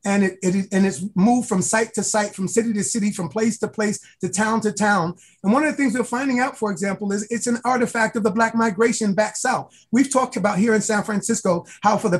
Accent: American